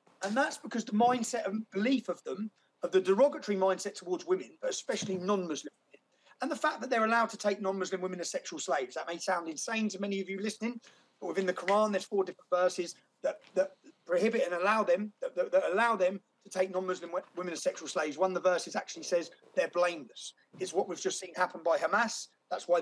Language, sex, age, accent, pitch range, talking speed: English, male, 30-49, British, 185-225 Hz, 220 wpm